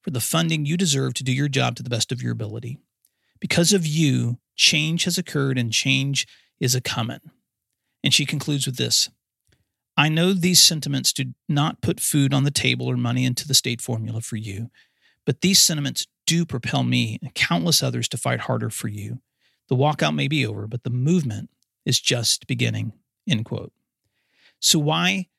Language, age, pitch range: English, 40-59, 120-155 Hz